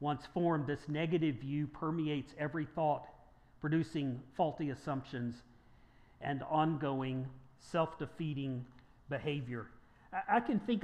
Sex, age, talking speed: male, 50-69, 100 wpm